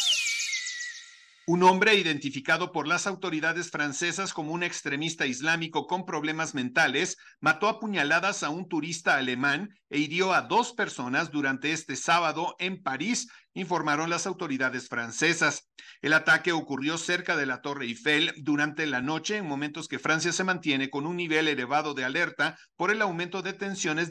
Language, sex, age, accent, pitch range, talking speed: Spanish, male, 50-69, Mexican, 150-185 Hz, 155 wpm